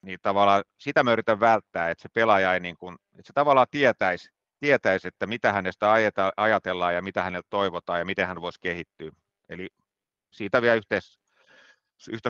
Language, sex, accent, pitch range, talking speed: Finnish, male, native, 90-110 Hz, 160 wpm